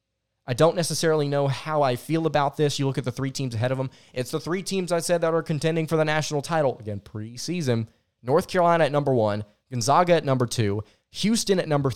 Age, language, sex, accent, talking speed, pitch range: 20-39, English, male, American, 225 wpm, 120-150 Hz